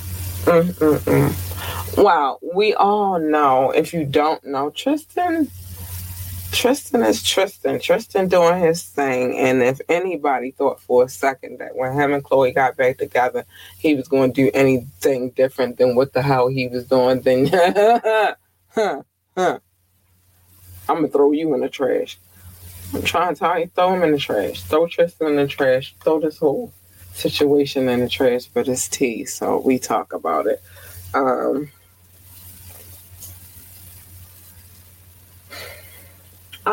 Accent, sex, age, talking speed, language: American, female, 20-39, 135 wpm, English